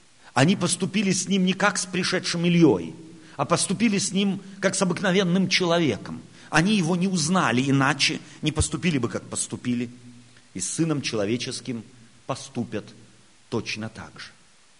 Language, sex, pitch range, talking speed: Russian, male, 120-175 Hz, 140 wpm